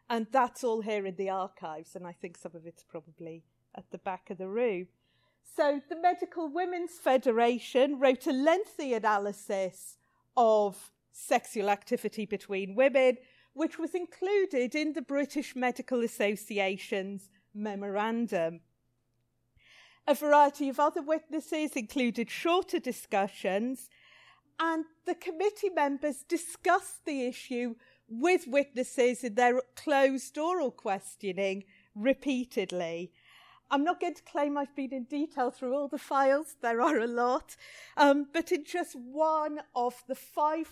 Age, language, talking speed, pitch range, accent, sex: 40-59, English, 135 wpm, 200-295 Hz, British, female